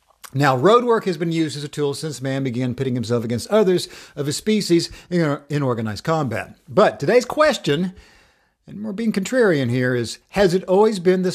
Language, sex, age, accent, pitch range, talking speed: English, male, 50-69, American, 125-170 Hz, 190 wpm